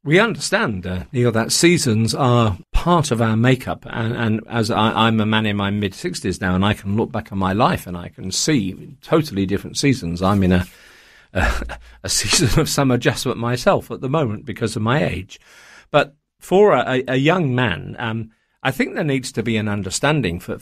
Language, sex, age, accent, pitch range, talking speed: English, male, 50-69, British, 100-125 Hz, 205 wpm